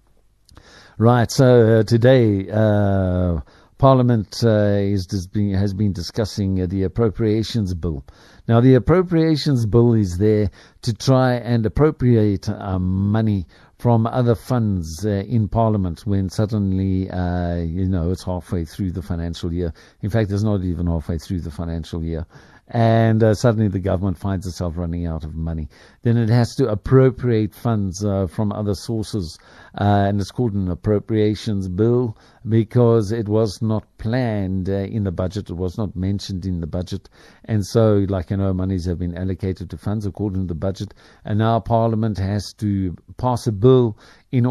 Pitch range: 95-115 Hz